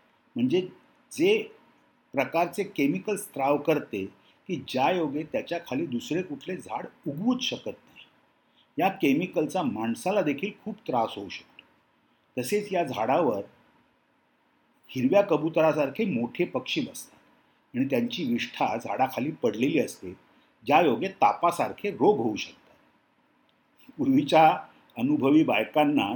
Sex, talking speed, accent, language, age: male, 85 wpm, native, Marathi, 50-69